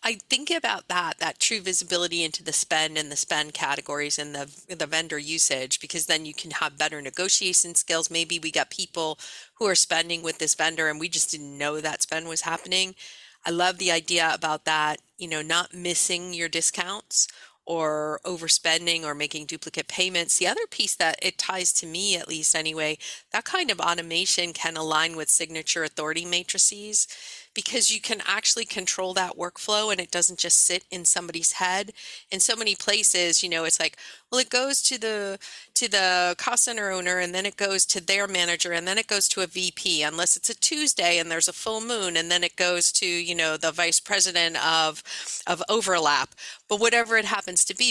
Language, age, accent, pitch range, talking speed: English, 40-59, American, 160-195 Hz, 200 wpm